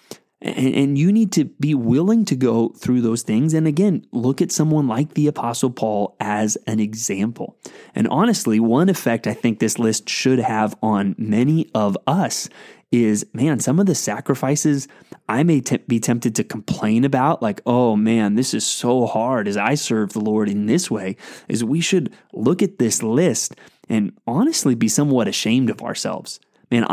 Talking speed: 180 wpm